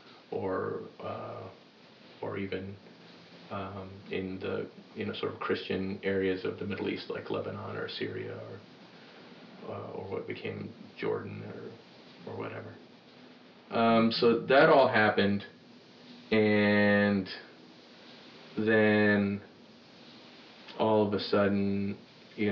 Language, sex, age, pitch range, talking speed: English, male, 30-49, 100-110 Hz, 110 wpm